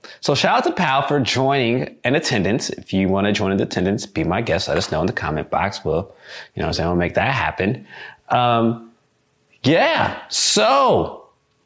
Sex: male